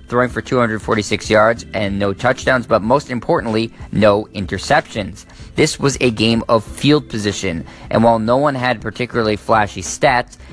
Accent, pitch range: American, 100-125 Hz